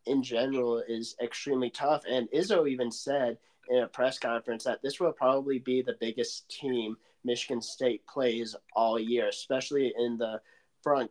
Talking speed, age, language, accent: 160 wpm, 20-39, English, American